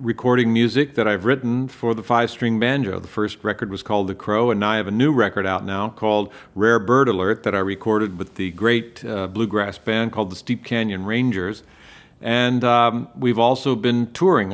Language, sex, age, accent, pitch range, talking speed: English, male, 50-69, American, 105-120 Hz, 200 wpm